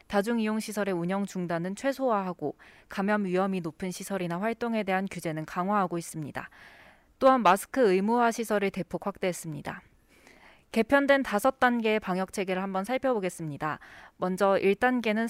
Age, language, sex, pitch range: 20-39, Korean, female, 180-235 Hz